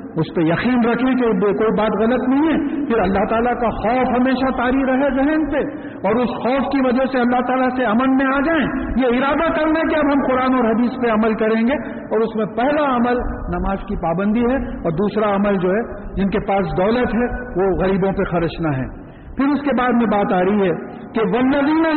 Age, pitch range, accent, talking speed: 50-69, 185-260 Hz, Indian, 205 wpm